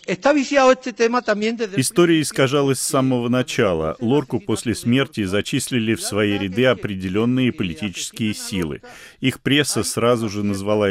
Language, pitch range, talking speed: Russian, 100-130 Hz, 110 wpm